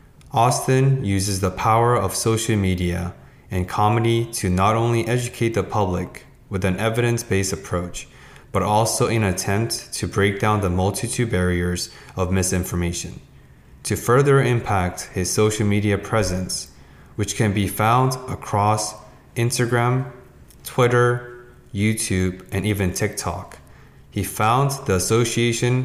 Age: 20-39